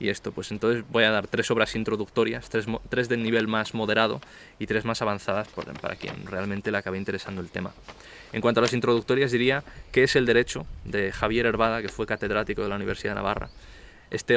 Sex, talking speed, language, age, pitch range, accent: male, 205 wpm, Spanish, 20-39, 110-125 Hz, Spanish